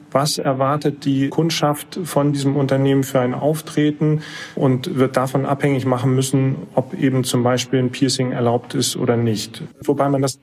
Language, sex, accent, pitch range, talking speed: German, male, German, 130-150 Hz, 165 wpm